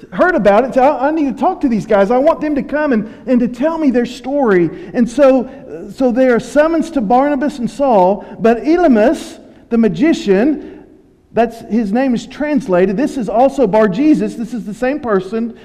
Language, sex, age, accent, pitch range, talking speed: English, male, 50-69, American, 225-285 Hz, 200 wpm